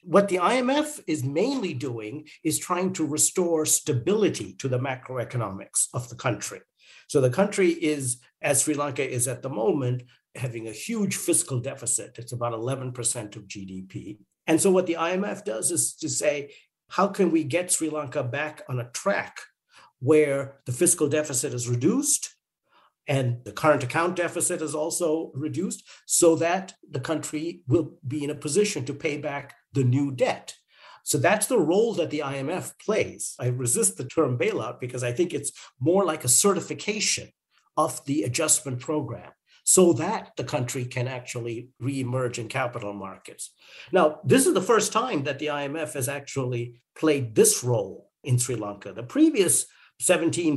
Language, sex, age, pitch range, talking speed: English, male, 50-69, 130-170 Hz, 165 wpm